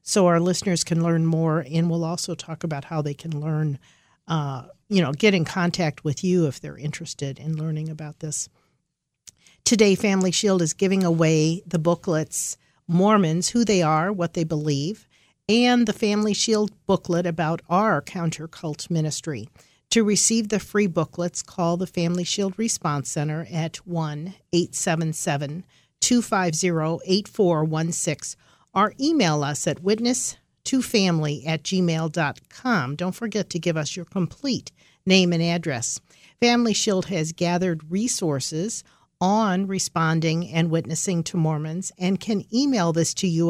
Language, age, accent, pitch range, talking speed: English, 50-69, American, 155-190 Hz, 145 wpm